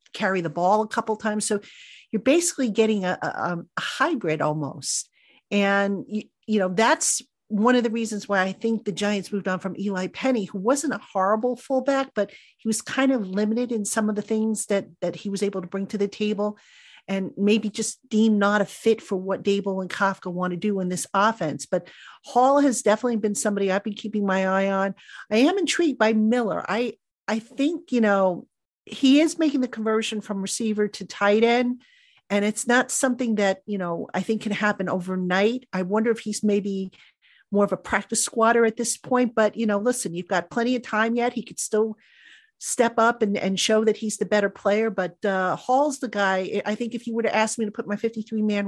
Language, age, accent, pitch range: English, 50-69, American, 195-230 Hz